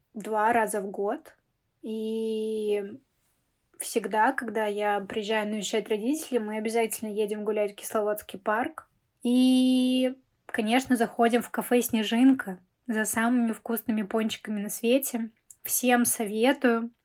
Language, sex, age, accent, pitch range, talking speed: Russian, female, 20-39, native, 215-240 Hz, 115 wpm